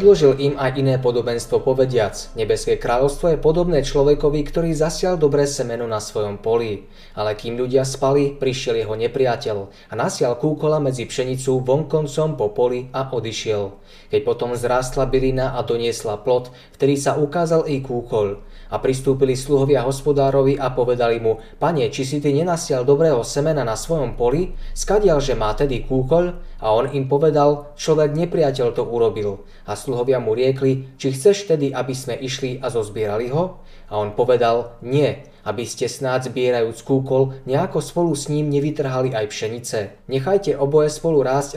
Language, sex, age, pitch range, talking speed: Slovak, male, 20-39, 125-150 Hz, 160 wpm